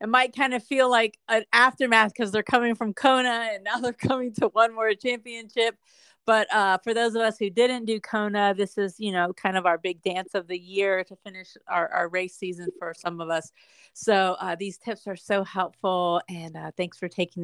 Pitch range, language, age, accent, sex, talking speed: 175-225 Hz, English, 40-59, American, female, 225 wpm